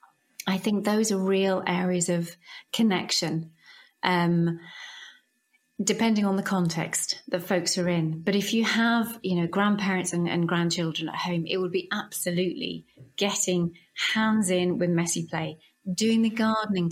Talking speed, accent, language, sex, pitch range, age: 150 wpm, British, English, female, 175-205 Hz, 30-49